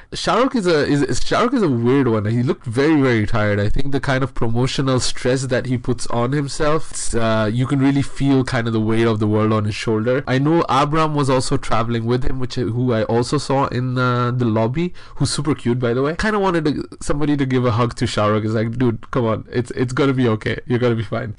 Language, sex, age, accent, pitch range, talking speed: English, male, 20-39, Indian, 115-150 Hz, 265 wpm